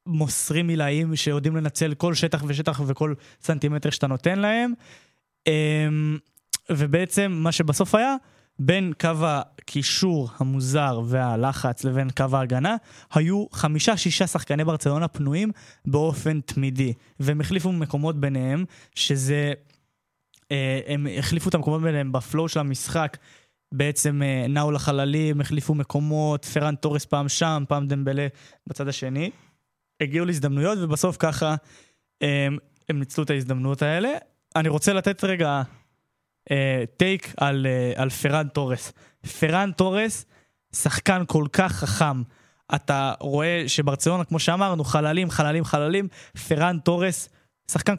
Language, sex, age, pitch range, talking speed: Hebrew, male, 20-39, 140-170 Hz, 120 wpm